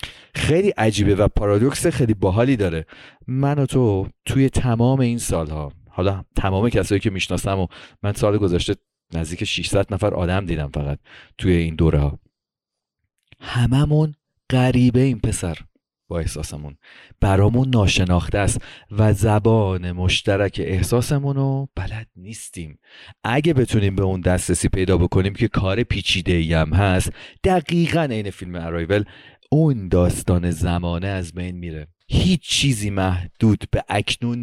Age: 40-59